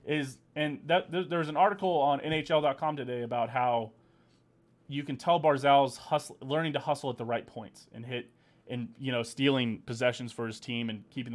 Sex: male